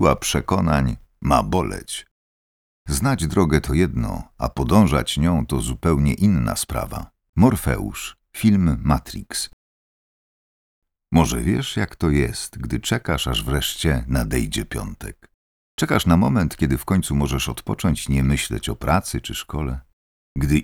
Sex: male